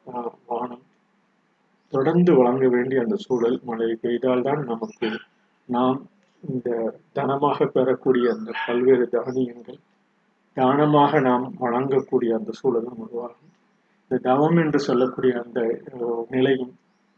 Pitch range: 120-155 Hz